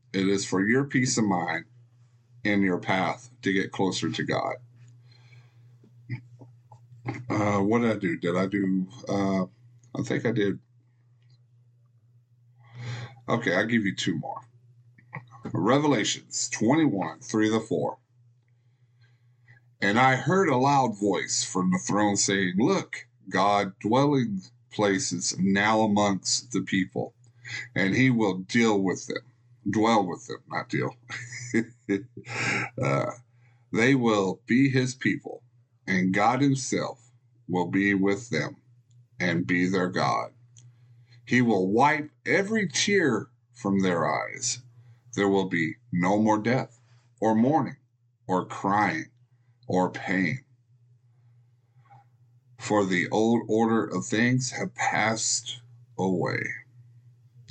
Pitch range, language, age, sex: 105-120 Hz, English, 50-69, male